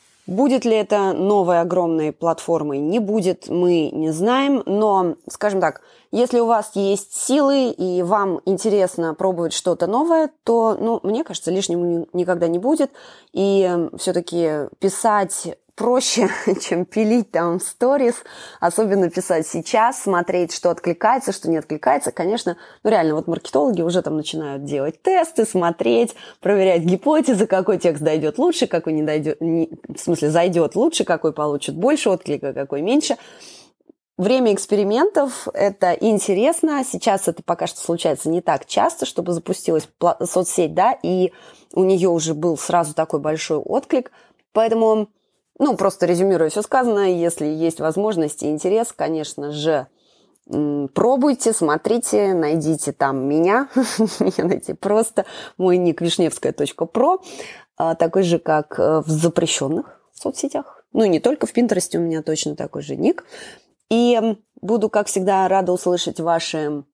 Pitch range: 165-220 Hz